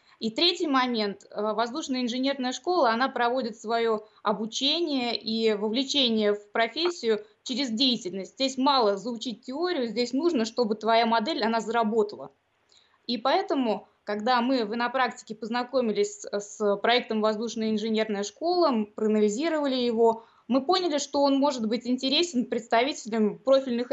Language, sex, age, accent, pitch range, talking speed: Russian, female, 20-39, native, 220-270 Hz, 125 wpm